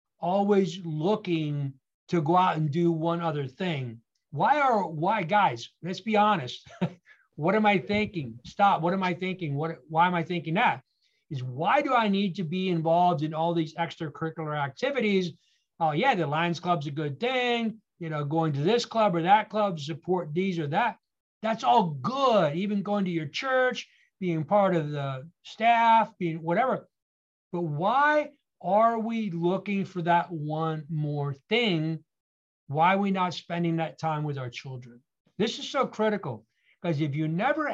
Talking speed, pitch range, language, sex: 175 wpm, 150-200 Hz, English, male